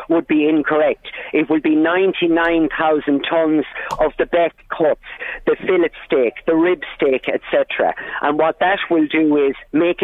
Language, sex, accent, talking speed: English, male, British, 155 wpm